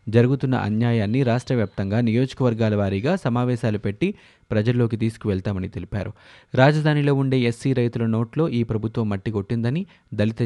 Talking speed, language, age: 115 wpm, Telugu, 20-39